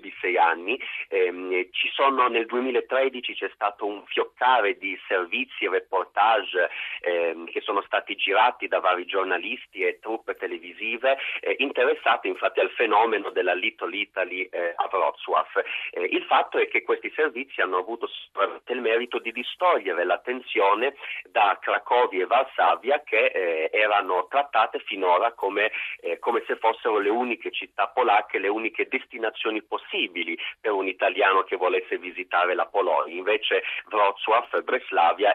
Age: 40-59